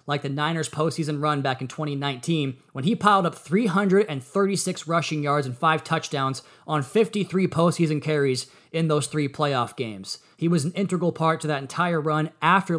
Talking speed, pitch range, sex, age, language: 175 wpm, 140-175 Hz, male, 20-39, English